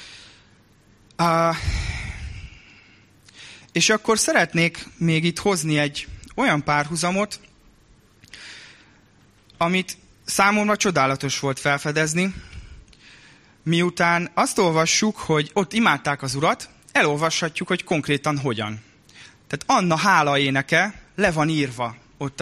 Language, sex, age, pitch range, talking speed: Hungarian, male, 20-39, 140-190 Hz, 95 wpm